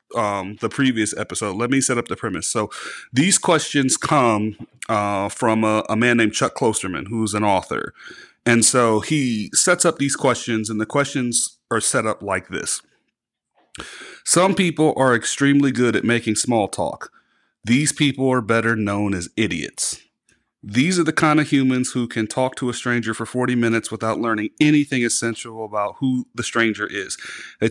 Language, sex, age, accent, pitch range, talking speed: English, male, 30-49, American, 110-130 Hz, 175 wpm